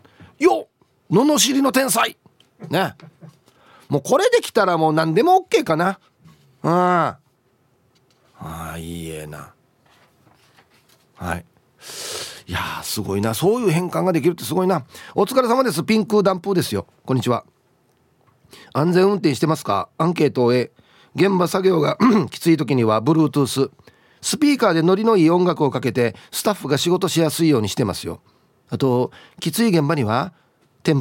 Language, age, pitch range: Japanese, 40-59, 125-190 Hz